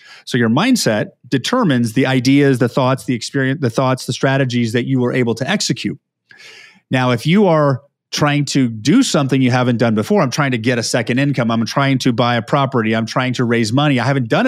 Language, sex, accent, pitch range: English, male, American, 125-150 Hz